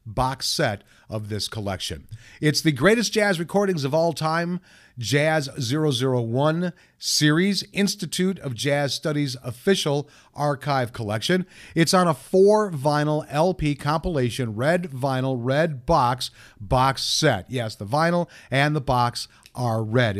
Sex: male